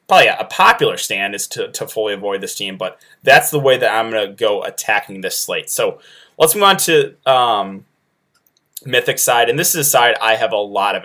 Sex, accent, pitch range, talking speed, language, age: male, American, 115-175 Hz, 225 wpm, English, 20-39